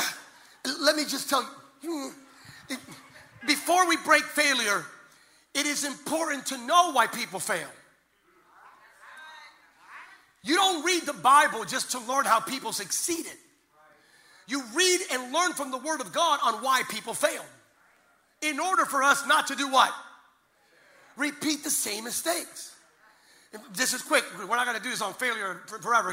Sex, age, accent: male, 40-59, American